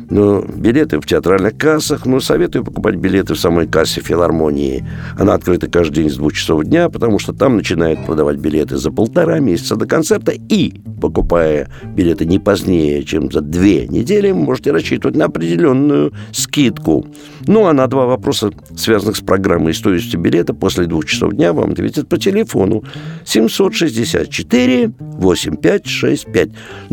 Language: Russian